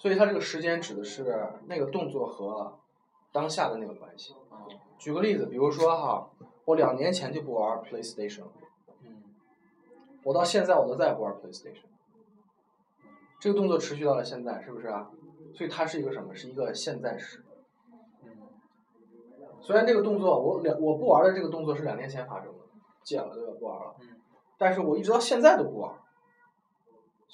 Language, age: Chinese, 20-39